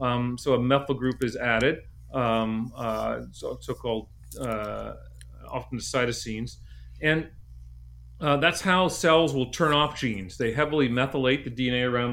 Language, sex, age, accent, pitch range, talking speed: English, male, 40-59, American, 115-140 Hz, 150 wpm